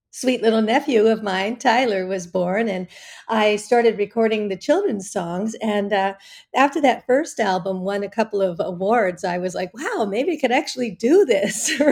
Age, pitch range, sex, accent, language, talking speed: 50-69, 185-235 Hz, female, American, English, 180 wpm